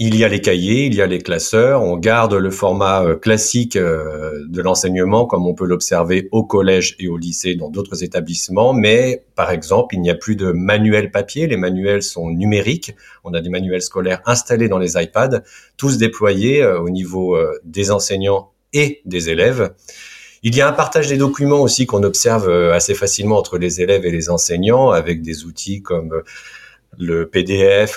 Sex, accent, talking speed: male, French, 180 wpm